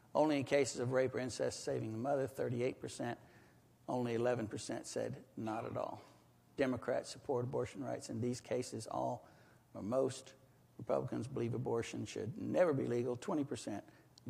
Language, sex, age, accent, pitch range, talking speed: English, male, 60-79, American, 120-140 Hz, 145 wpm